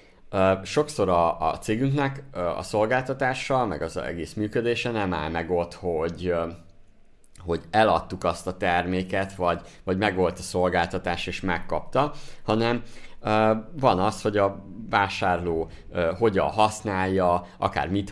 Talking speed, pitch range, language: 130 wpm, 85-105 Hz, Hungarian